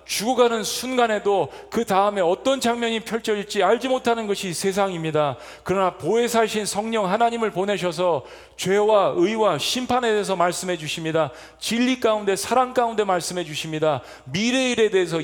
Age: 40-59